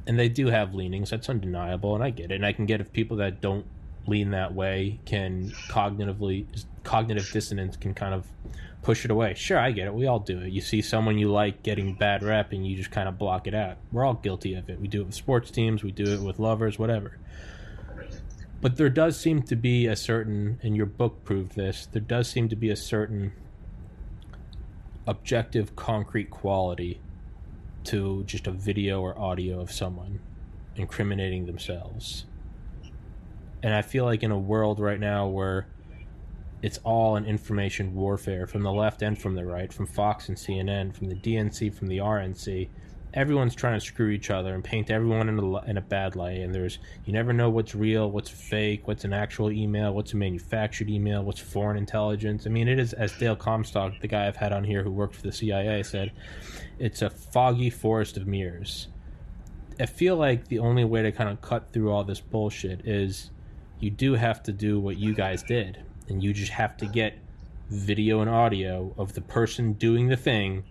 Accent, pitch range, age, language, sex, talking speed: American, 95-110 Hz, 20-39, English, male, 200 wpm